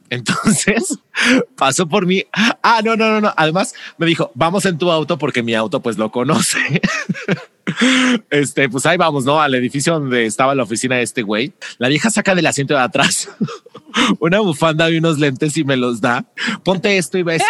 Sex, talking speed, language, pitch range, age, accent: male, 190 wpm, Spanish, 150-200 Hz, 30-49, Mexican